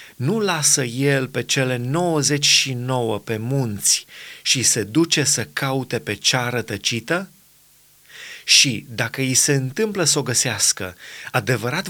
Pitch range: 120-150 Hz